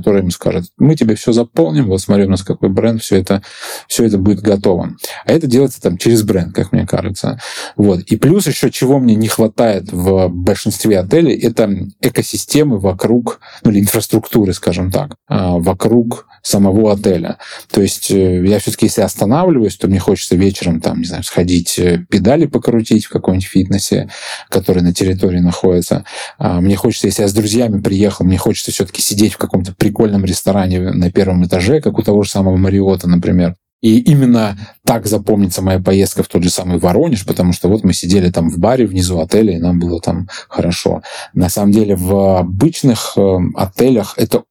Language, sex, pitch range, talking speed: Russian, male, 90-110 Hz, 175 wpm